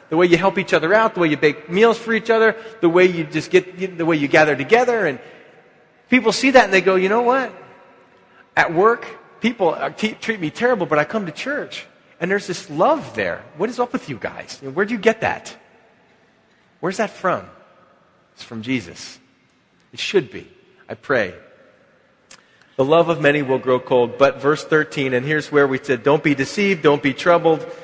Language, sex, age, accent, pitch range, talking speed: English, male, 30-49, American, 130-180 Hz, 205 wpm